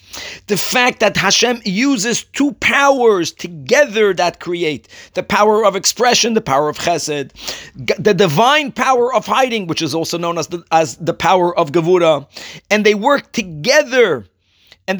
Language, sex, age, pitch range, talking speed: English, male, 40-59, 185-245 Hz, 155 wpm